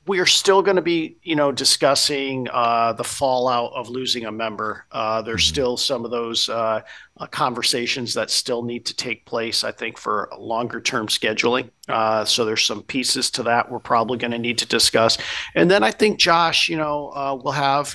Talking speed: 200 wpm